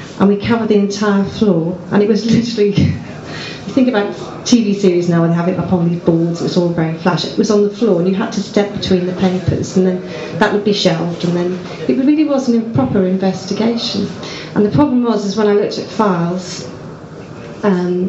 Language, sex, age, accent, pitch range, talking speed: English, female, 40-59, British, 180-210 Hz, 220 wpm